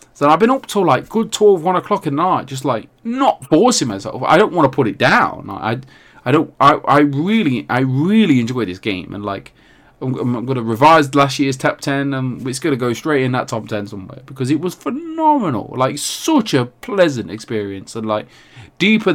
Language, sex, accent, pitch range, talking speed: English, male, British, 120-175 Hz, 205 wpm